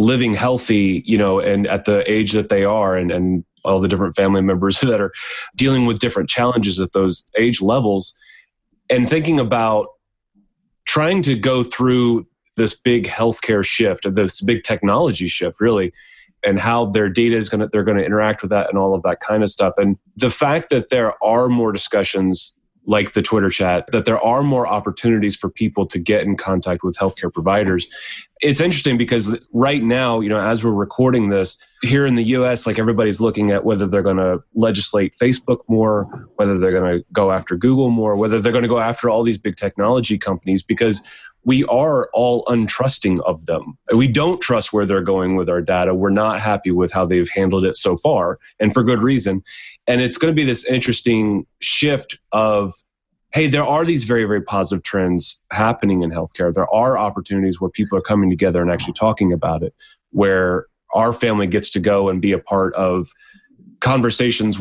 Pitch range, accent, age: 95-120 Hz, American, 30-49